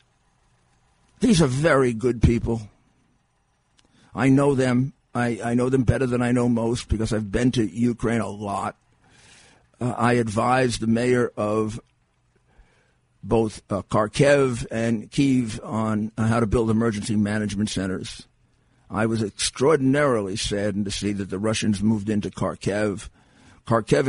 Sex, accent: male, American